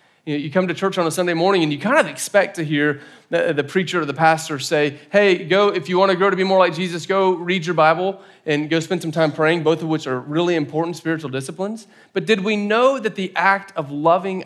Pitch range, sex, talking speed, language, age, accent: 140-180 Hz, male, 250 wpm, English, 30-49, American